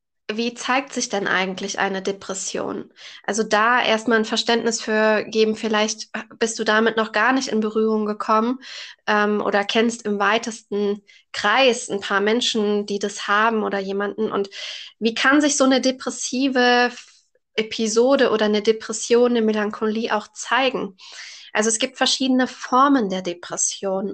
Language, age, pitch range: German, 20-39, 210-230 Hz